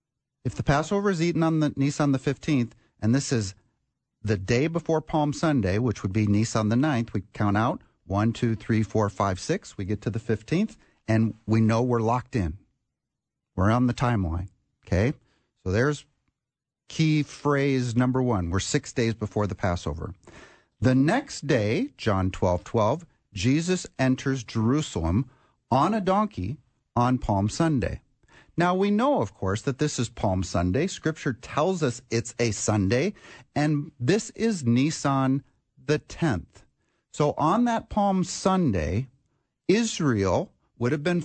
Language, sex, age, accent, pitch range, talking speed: English, male, 40-59, American, 110-150 Hz, 155 wpm